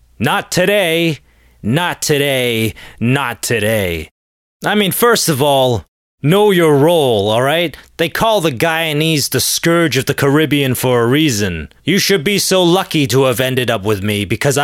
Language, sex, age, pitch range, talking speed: English, male, 30-49, 125-170 Hz, 160 wpm